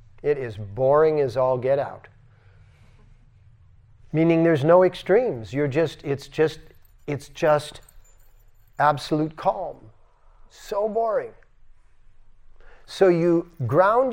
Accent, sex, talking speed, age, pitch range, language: American, male, 100 wpm, 40-59, 115-170 Hz, English